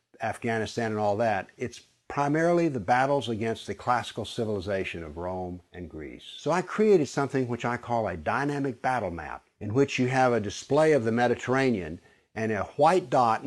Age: 60-79